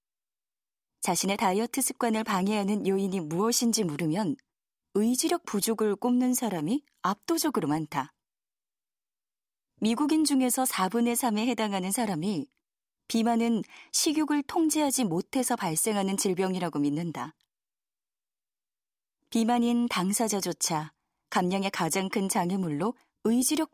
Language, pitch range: Korean, 190-245 Hz